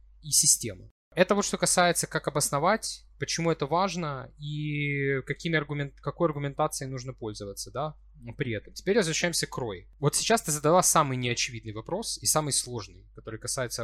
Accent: native